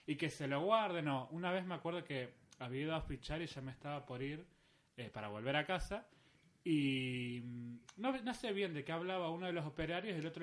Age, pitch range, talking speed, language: 20-39, 130-170 Hz, 235 wpm, Spanish